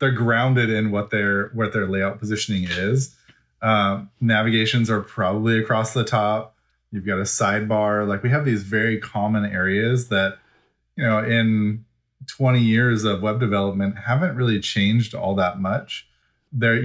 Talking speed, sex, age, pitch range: 155 wpm, male, 20-39, 100-120 Hz